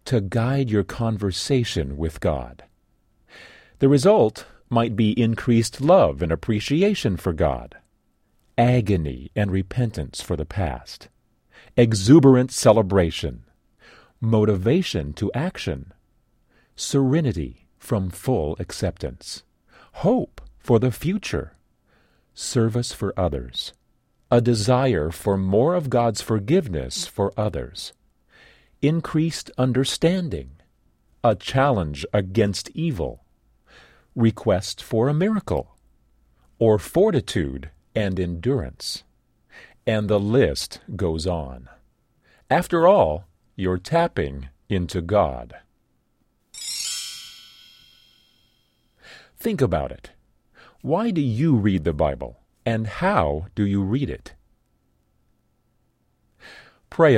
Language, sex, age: English, male, 40-59